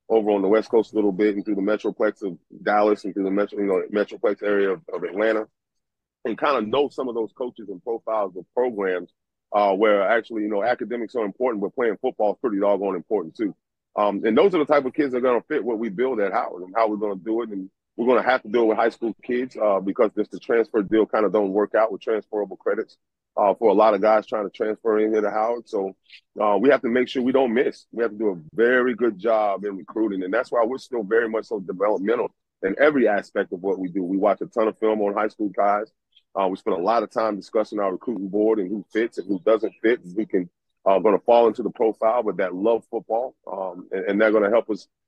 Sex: male